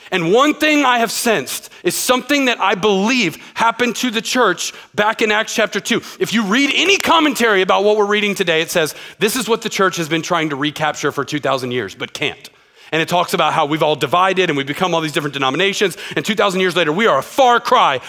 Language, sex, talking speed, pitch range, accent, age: English, male, 235 wpm, 190-265 Hz, American, 40-59